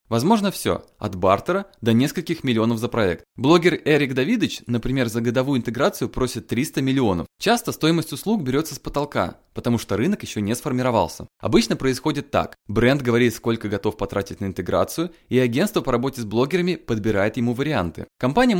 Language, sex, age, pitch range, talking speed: Russian, male, 20-39, 115-150 Hz, 165 wpm